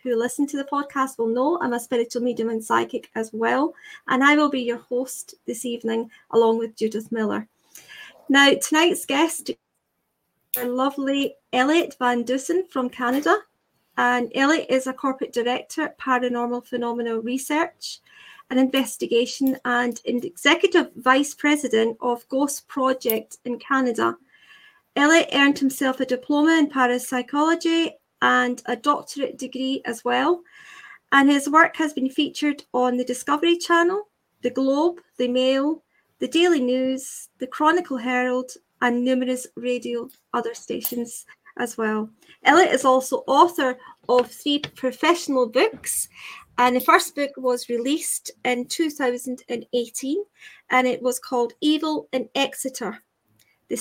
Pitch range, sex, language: 245-300 Hz, female, English